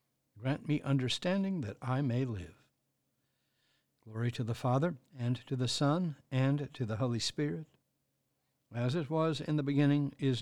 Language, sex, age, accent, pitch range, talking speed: English, male, 60-79, American, 120-140 Hz, 155 wpm